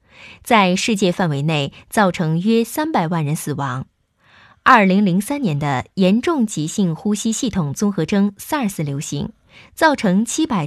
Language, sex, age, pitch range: Chinese, female, 20-39, 155-225 Hz